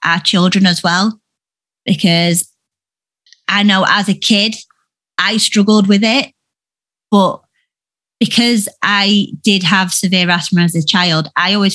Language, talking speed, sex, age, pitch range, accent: English, 135 wpm, female, 20-39, 170-205 Hz, British